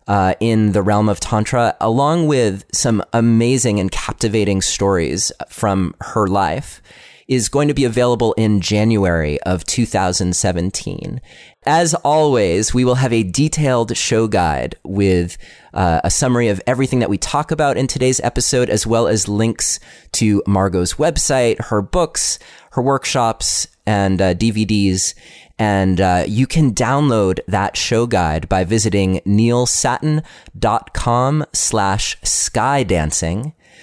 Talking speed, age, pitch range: 130 wpm, 30-49, 95-125 Hz